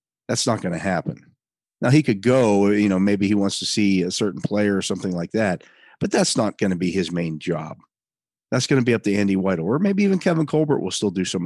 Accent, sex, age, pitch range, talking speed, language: American, male, 40-59, 95-115 Hz, 255 wpm, English